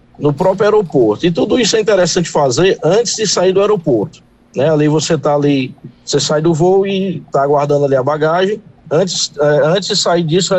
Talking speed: 200 wpm